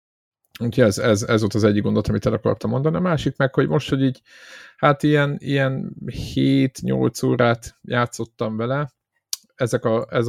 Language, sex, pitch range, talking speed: Hungarian, male, 105-120 Hz, 165 wpm